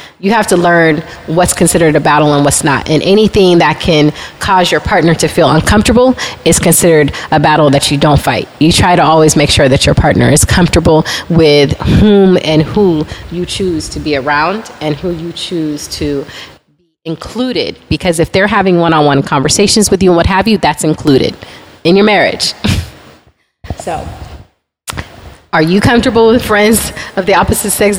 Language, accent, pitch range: English, American, 150-185 Hz